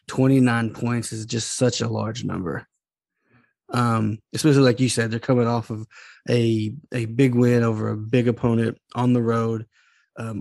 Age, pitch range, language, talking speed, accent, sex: 20-39, 115-125 Hz, English, 165 wpm, American, male